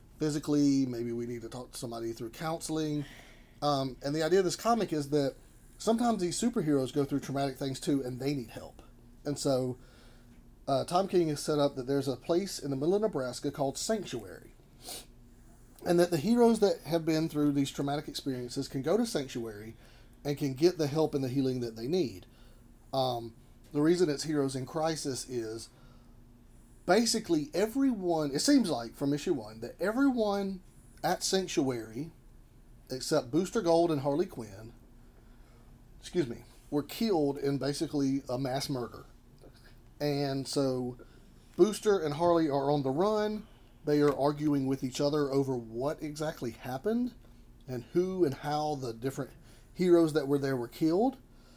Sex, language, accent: male, English, American